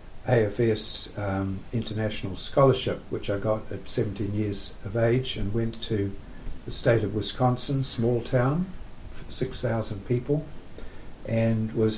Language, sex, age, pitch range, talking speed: English, male, 60-79, 100-125 Hz, 125 wpm